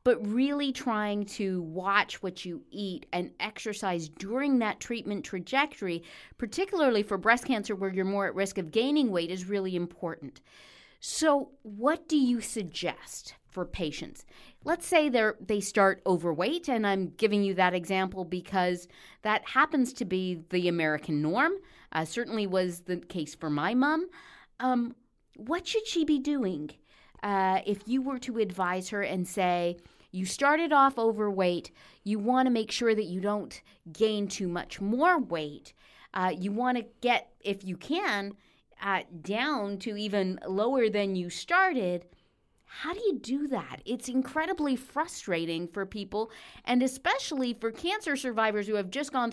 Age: 40-59